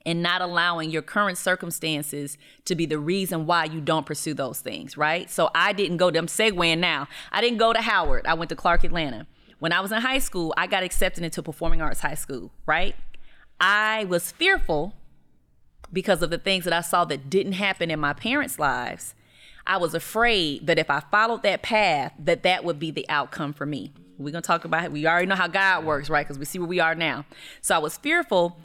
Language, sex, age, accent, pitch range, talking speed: English, female, 30-49, American, 160-185 Hz, 220 wpm